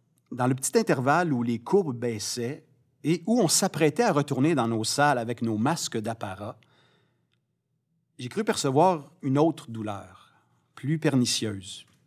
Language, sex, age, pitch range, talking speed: French, male, 40-59, 125-155 Hz, 145 wpm